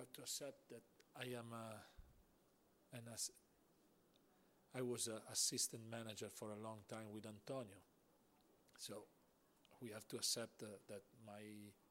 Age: 40-59